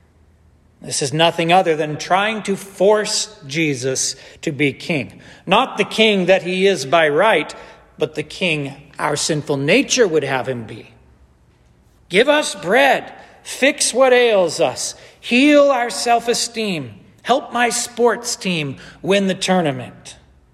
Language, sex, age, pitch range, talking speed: English, male, 40-59, 145-225 Hz, 135 wpm